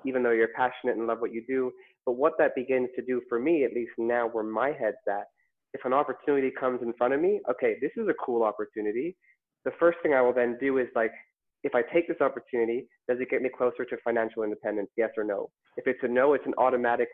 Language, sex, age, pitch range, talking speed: English, male, 20-39, 115-140 Hz, 245 wpm